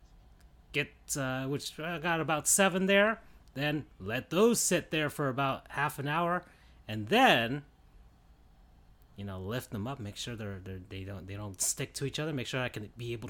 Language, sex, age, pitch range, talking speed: English, male, 30-49, 115-185 Hz, 200 wpm